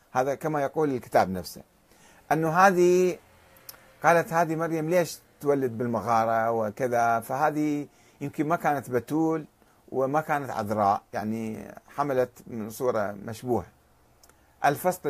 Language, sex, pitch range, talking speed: Arabic, male, 115-180 Hz, 110 wpm